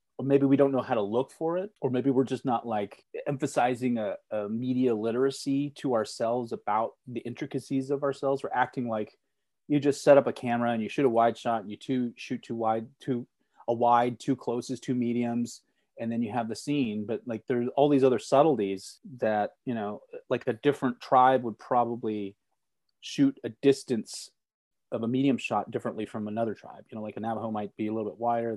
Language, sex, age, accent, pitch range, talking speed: English, male, 30-49, American, 110-130 Hz, 210 wpm